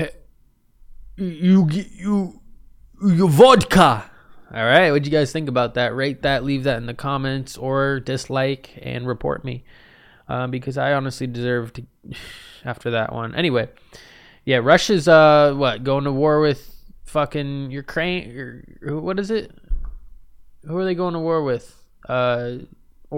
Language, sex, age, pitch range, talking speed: English, male, 20-39, 120-150 Hz, 155 wpm